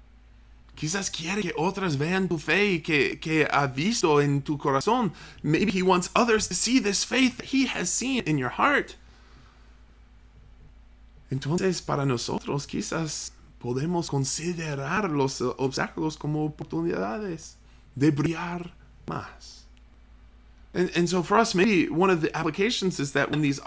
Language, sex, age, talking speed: English, male, 20-39, 145 wpm